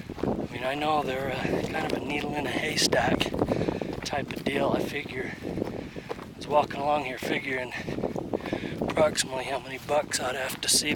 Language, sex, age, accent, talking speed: English, male, 30-49, American, 170 wpm